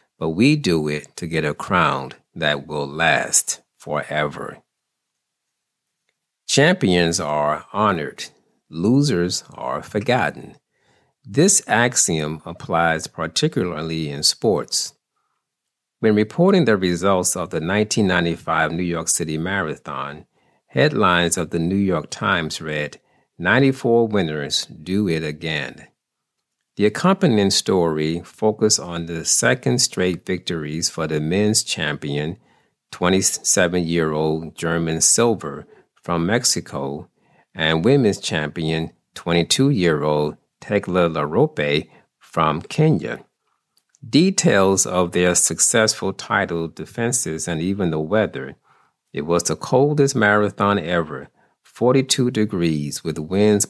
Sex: male